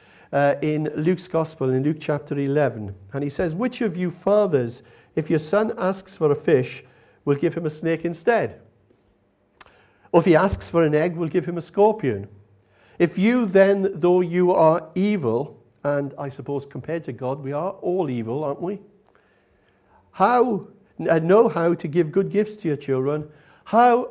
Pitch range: 130-185 Hz